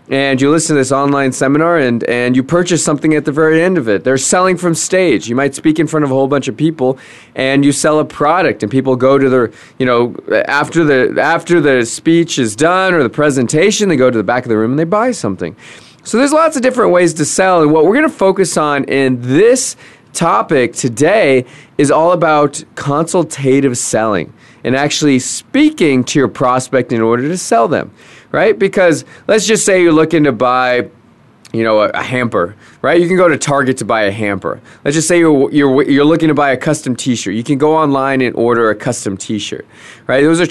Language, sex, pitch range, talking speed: English, male, 130-170 Hz, 220 wpm